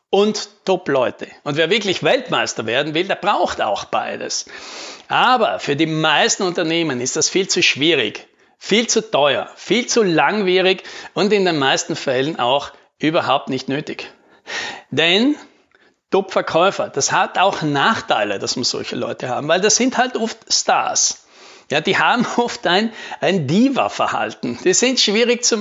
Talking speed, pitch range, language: 150 wpm, 165-235 Hz, German